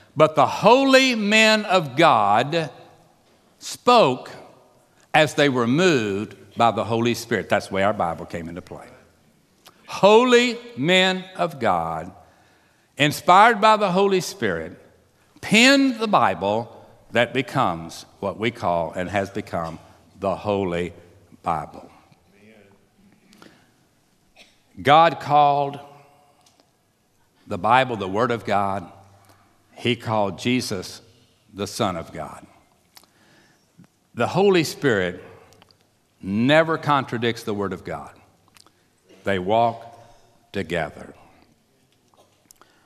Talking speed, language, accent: 100 wpm, English, American